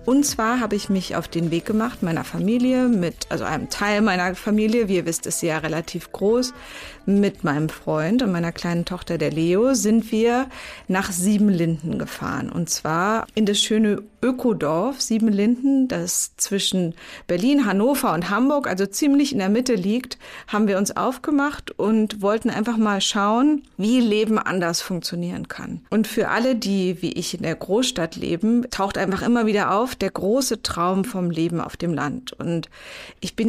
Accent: German